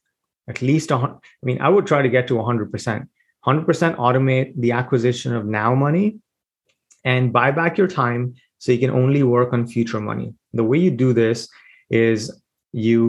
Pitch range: 115-130 Hz